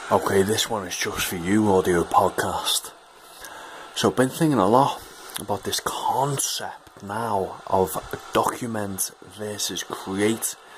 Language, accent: English, British